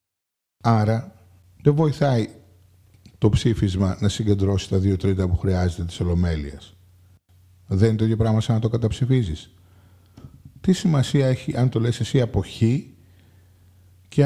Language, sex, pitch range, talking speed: Greek, male, 90-140 Hz, 135 wpm